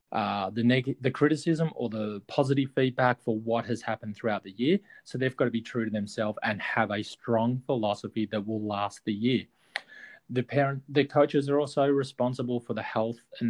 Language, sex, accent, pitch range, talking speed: English, male, Australian, 110-135 Hz, 200 wpm